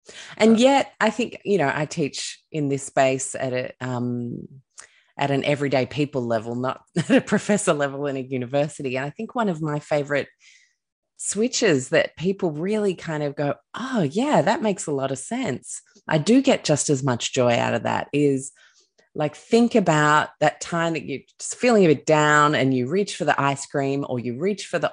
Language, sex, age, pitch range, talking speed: English, female, 20-39, 130-175 Hz, 200 wpm